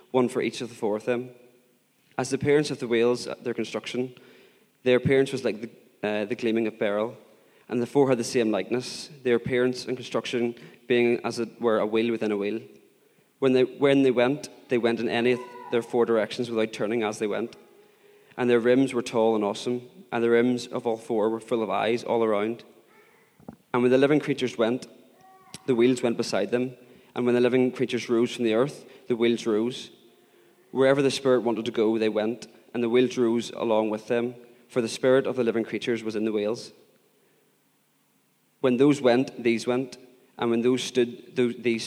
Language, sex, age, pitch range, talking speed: English, male, 20-39, 115-125 Hz, 200 wpm